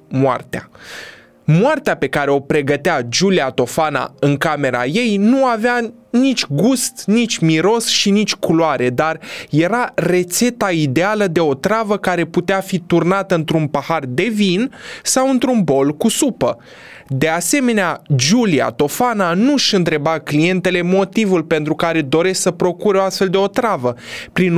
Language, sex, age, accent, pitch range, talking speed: Romanian, male, 20-39, native, 160-235 Hz, 140 wpm